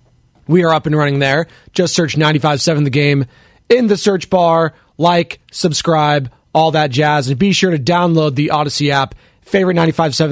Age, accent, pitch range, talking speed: 20-39, American, 150-225 Hz, 170 wpm